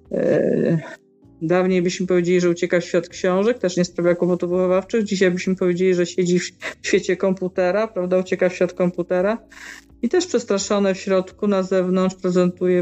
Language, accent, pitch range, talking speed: Polish, native, 175-205 Hz, 155 wpm